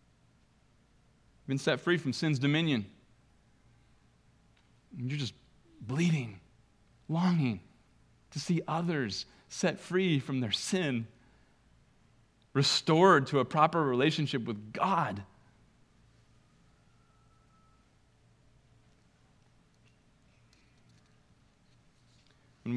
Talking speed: 70 wpm